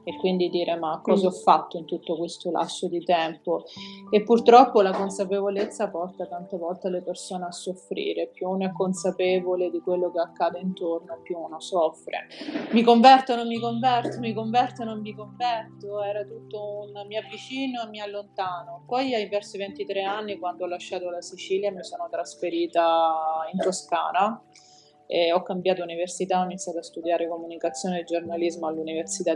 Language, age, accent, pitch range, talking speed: Italian, 30-49, native, 170-205 Hz, 170 wpm